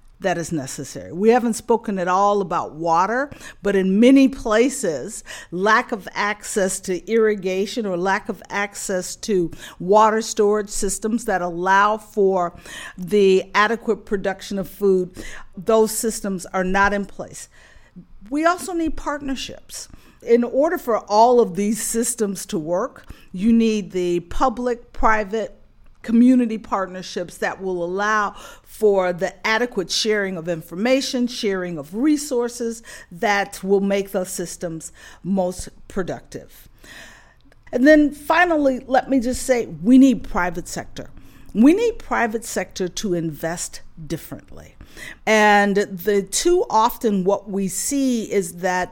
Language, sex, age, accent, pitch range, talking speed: English, female, 50-69, American, 185-235 Hz, 130 wpm